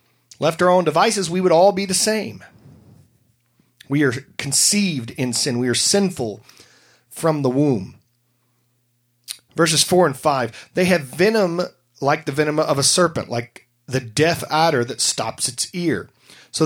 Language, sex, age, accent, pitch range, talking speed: English, male, 40-59, American, 120-175 Hz, 155 wpm